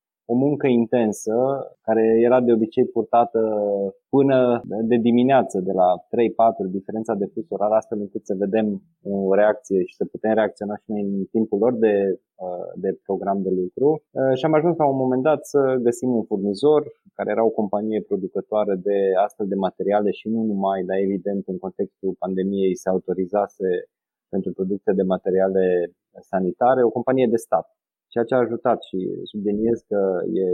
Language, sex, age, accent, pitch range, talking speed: Romanian, male, 20-39, native, 100-125 Hz, 165 wpm